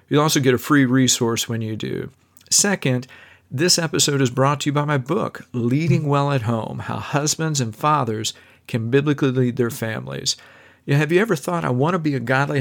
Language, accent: English, American